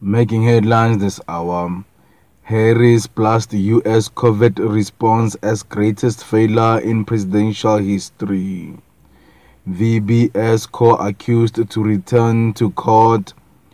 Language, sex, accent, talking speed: English, male, South African, 95 wpm